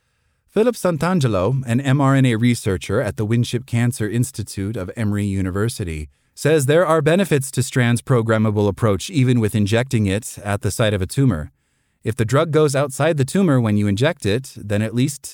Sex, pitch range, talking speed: male, 100-130 Hz, 175 wpm